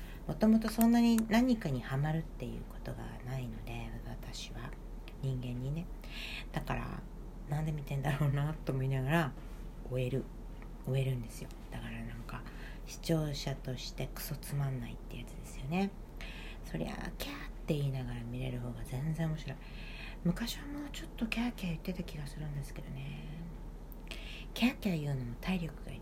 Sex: female